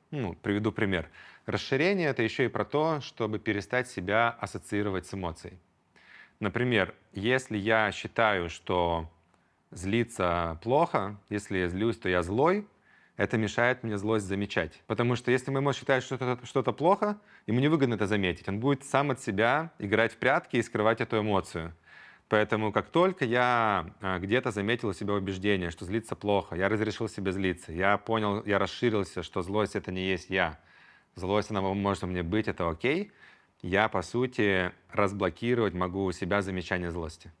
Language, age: Russian, 30-49